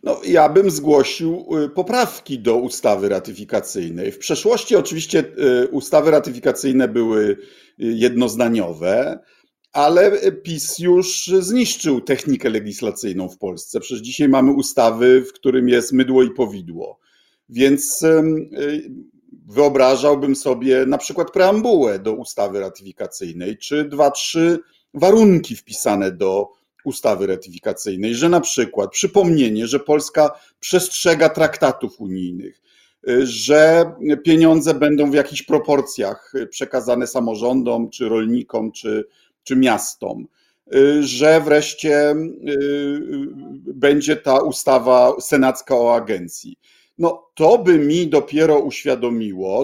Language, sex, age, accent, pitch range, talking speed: Polish, male, 50-69, native, 125-170 Hz, 105 wpm